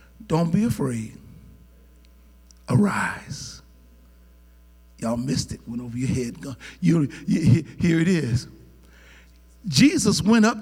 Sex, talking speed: male, 95 wpm